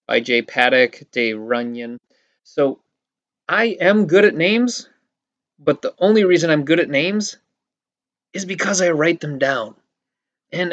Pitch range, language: 135-190 Hz, English